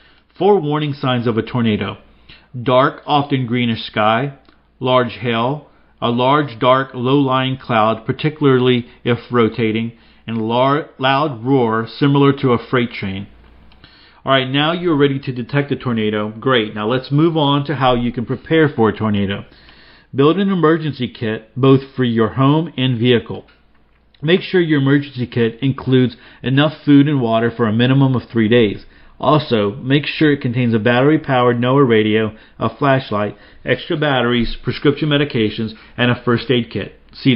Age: 40-59